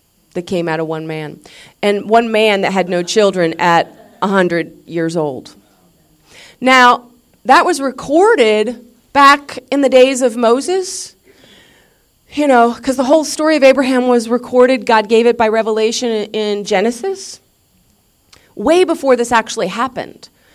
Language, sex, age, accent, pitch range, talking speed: English, female, 40-59, American, 170-250 Hz, 145 wpm